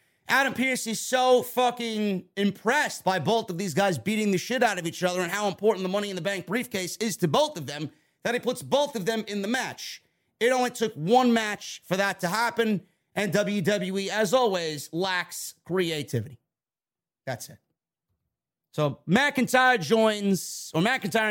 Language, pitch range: English, 175-235 Hz